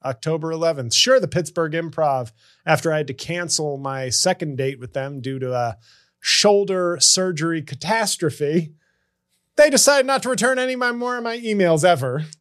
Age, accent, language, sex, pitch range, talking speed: 30-49, American, English, male, 145-205 Hz, 160 wpm